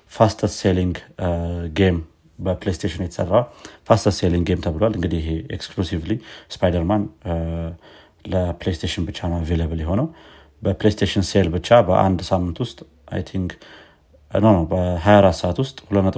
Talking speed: 95 wpm